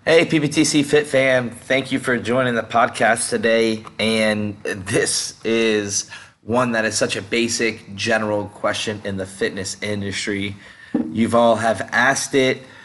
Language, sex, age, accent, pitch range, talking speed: English, male, 20-39, American, 110-130 Hz, 140 wpm